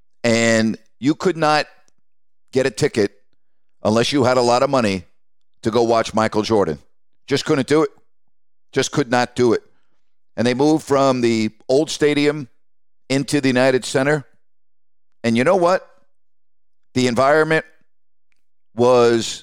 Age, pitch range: 50-69, 115-140 Hz